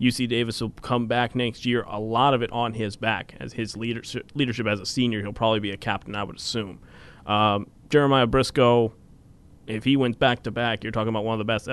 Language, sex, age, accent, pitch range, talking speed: English, male, 30-49, American, 115-155 Hz, 220 wpm